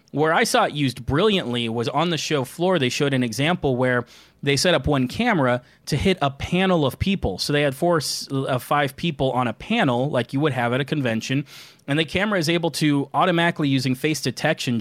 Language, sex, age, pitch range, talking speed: English, male, 30-49, 130-160 Hz, 220 wpm